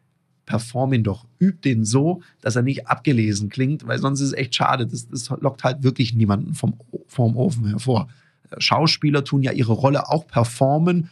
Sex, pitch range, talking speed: male, 120-155 Hz, 185 wpm